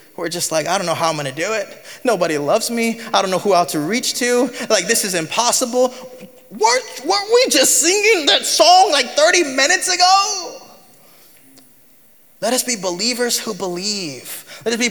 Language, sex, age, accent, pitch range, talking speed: English, male, 20-39, American, 170-245 Hz, 190 wpm